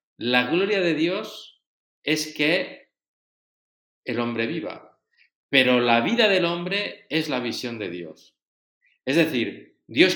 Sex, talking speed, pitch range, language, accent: male, 130 wpm, 115-165 Hz, Spanish, Spanish